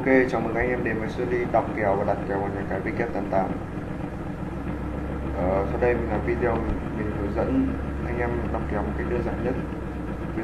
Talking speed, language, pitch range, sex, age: 205 wpm, Vietnamese, 100-120 Hz, male, 20-39